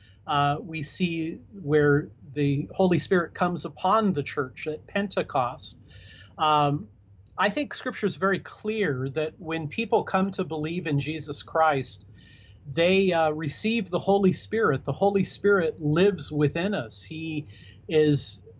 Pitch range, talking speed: 140-185 Hz, 140 wpm